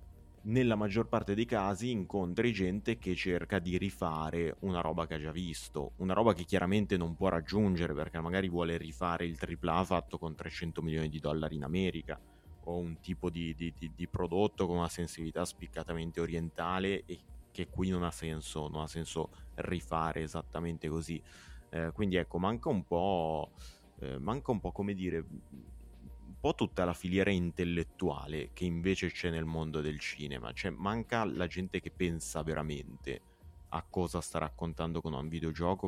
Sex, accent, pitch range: male, native, 80-90 Hz